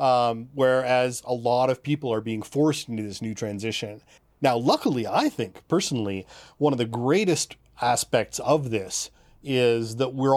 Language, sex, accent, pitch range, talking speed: English, male, American, 110-135 Hz, 160 wpm